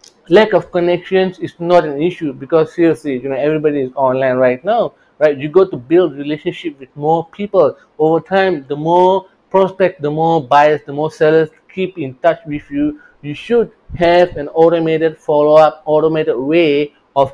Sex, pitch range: male, 145-175 Hz